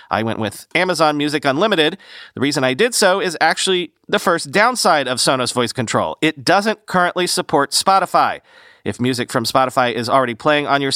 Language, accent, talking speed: English, American, 185 wpm